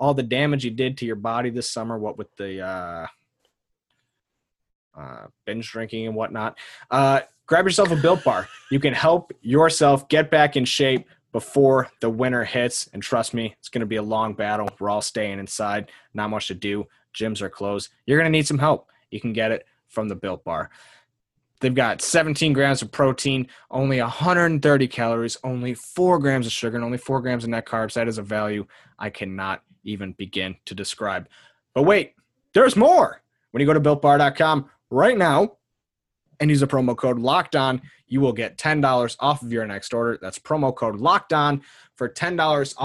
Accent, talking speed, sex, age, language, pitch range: American, 190 wpm, male, 20-39, English, 115-155 Hz